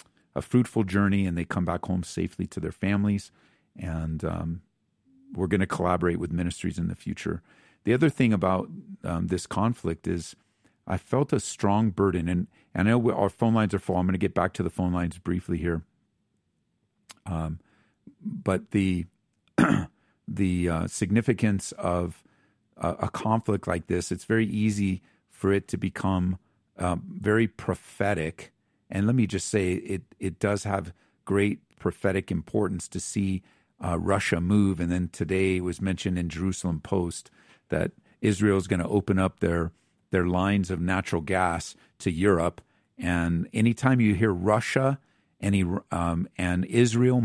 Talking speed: 165 wpm